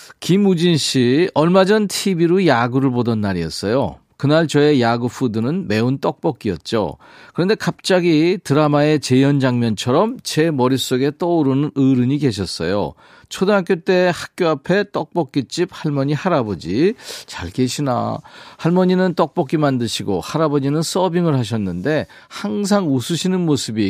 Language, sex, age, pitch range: Korean, male, 40-59, 115-170 Hz